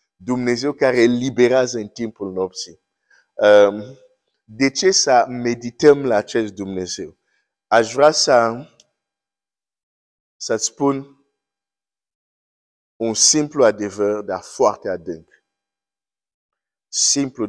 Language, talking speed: Romanian, 85 wpm